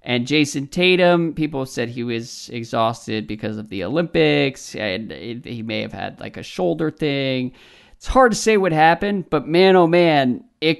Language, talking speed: English, 180 wpm